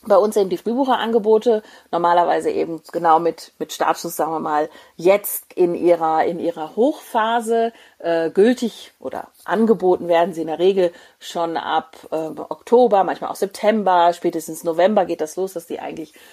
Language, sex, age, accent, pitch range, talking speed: German, female, 40-59, German, 170-230 Hz, 160 wpm